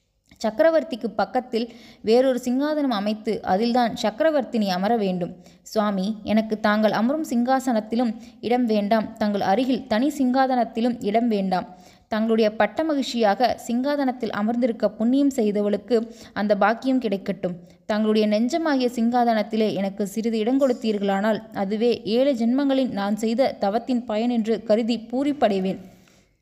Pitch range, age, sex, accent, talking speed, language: 205-245 Hz, 20-39, female, native, 110 wpm, Tamil